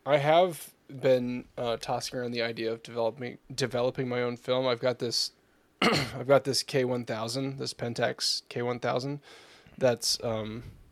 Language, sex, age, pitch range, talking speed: English, male, 10-29, 115-140 Hz, 165 wpm